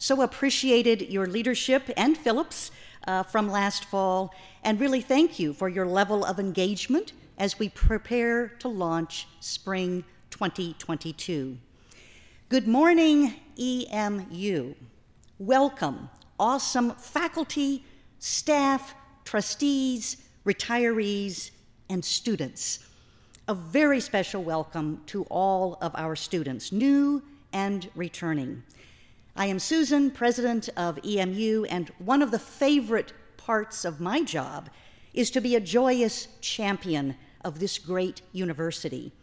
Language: English